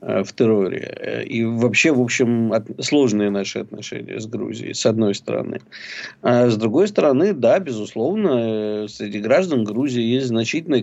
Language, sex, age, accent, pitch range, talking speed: Russian, male, 50-69, native, 110-125 Hz, 145 wpm